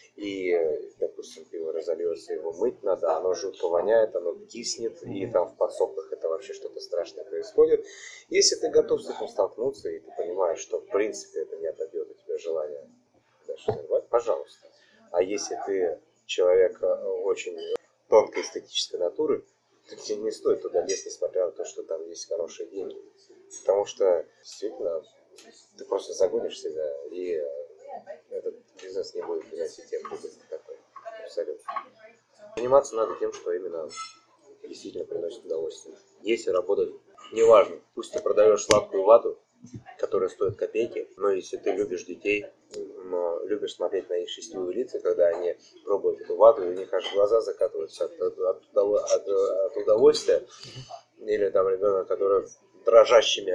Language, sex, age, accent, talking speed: Russian, male, 30-49, native, 150 wpm